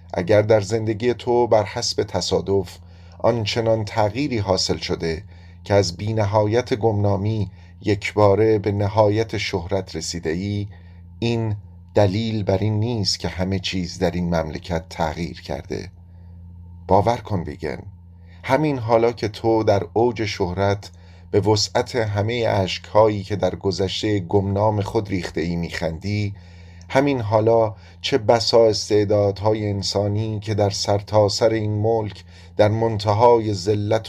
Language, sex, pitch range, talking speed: Persian, male, 90-110 Hz, 130 wpm